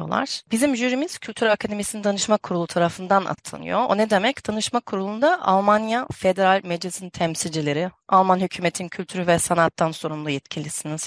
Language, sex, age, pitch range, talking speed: Turkish, female, 30-49, 165-200 Hz, 130 wpm